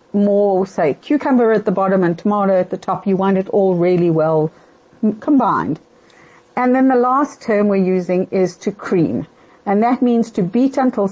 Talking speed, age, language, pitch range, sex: 185 wpm, 50-69, English, 185-255 Hz, female